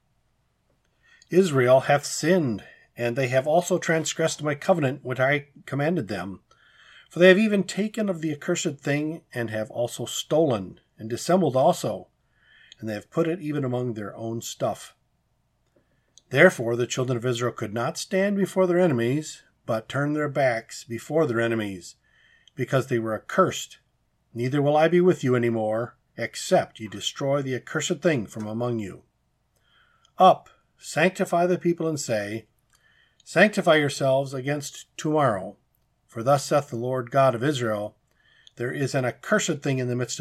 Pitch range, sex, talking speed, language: 120-160 Hz, male, 155 wpm, English